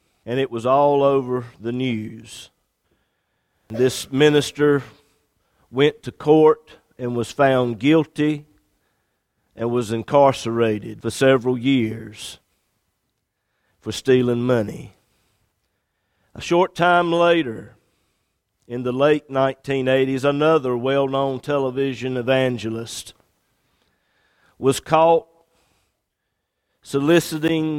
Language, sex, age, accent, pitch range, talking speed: English, male, 50-69, American, 115-145 Hz, 85 wpm